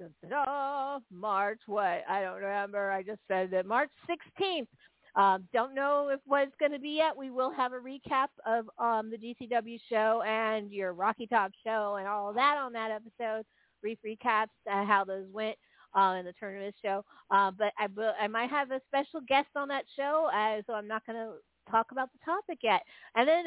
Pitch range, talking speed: 210-280 Hz, 200 wpm